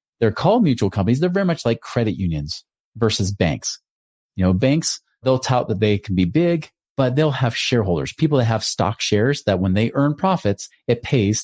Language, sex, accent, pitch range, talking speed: English, male, American, 105-135 Hz, 200 wpm